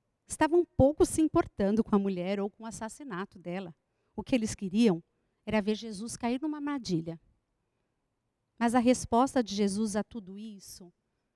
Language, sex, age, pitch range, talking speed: Portuguese, female, 50-69, 185-245 Hz, 160 wpm